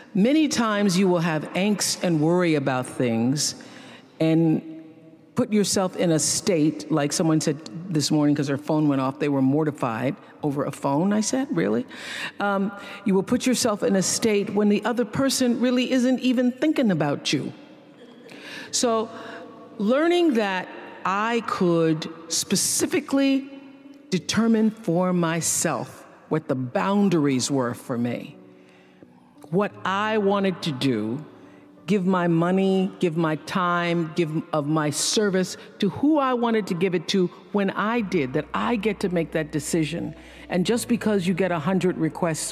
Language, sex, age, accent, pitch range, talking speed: English, female, 50-69, American, 155-210 Hz, 150 wpm